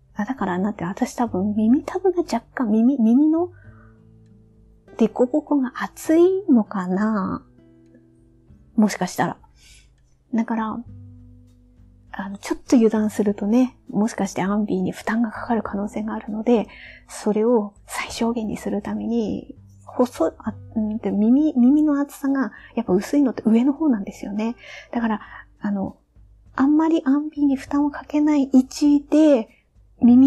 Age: 30-49